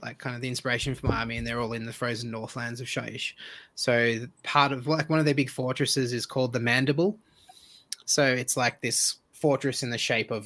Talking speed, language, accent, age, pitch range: 225 wpm, English, Australian, 20-39, 115-140 Hz